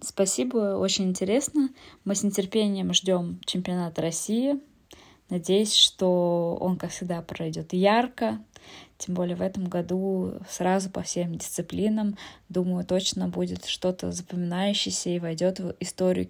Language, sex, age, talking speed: Russian, female, 20-39, 125 wpm